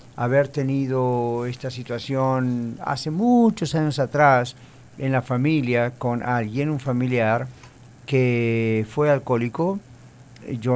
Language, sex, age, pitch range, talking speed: English, male, 50-69, 120-140 Hz, 105 wpm